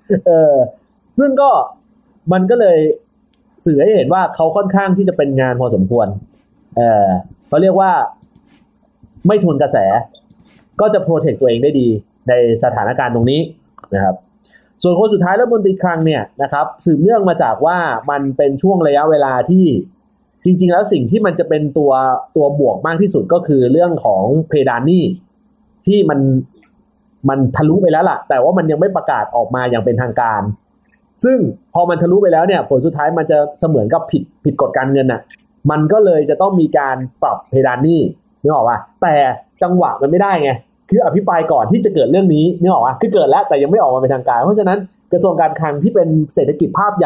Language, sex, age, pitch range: Thai, male, 30-49, 135-200 Hz